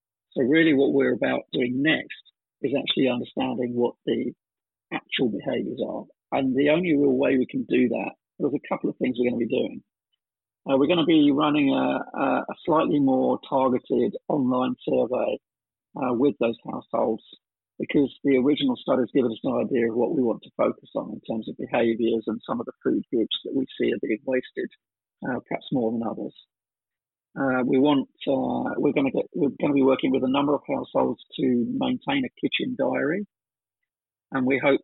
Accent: British